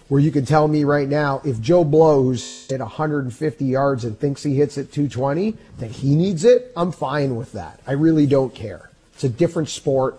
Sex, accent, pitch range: male, American, 130-205 Hz